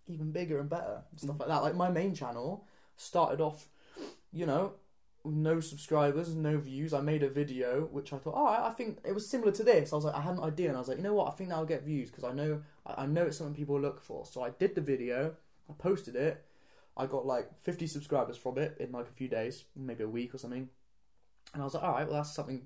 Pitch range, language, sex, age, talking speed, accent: 135-165 Hz, English, male, 10-29, 265 wpm, British